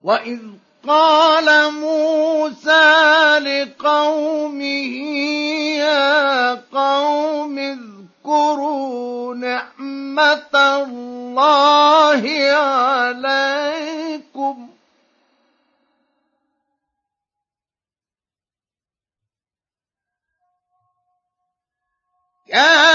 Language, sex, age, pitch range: Arabic, male, 50-69, 245-300 Hz